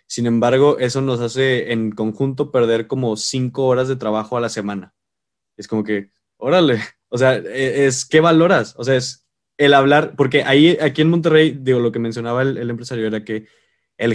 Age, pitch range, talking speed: 20-39, 110-130 Hz, 190 wpm